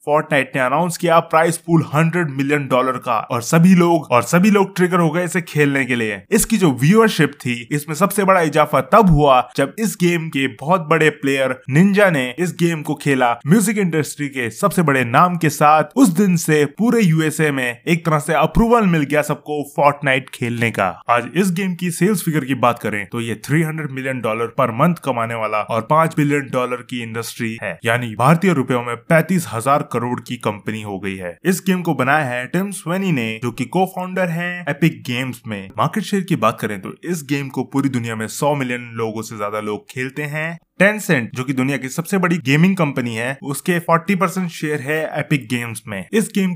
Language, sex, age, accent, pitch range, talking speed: Hindi, male, 20-39, native, 130-175 Hz, 210 wpm